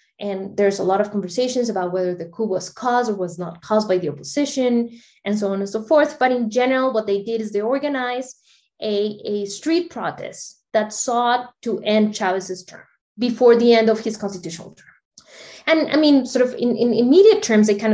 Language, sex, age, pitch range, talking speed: English, female, 20-39, 205-255 Hz, 205 wpm